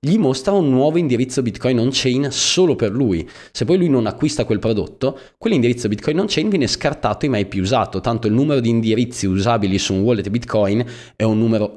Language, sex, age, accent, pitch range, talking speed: Italian, male, 20-39, native, 100-125 Hz, 200 wpm